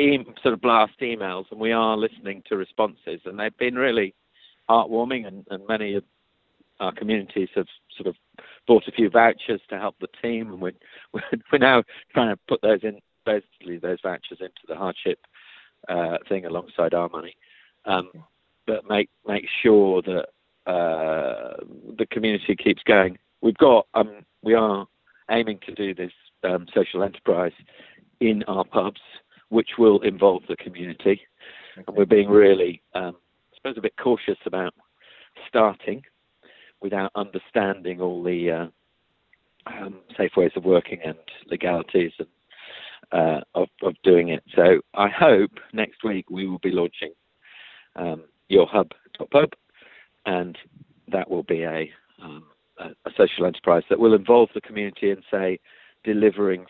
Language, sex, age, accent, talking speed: English, male, 50-69, British, 150 wpm